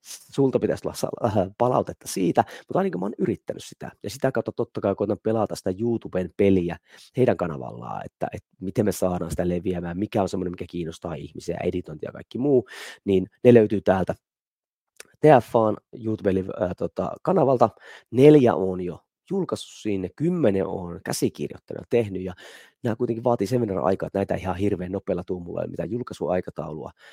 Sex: male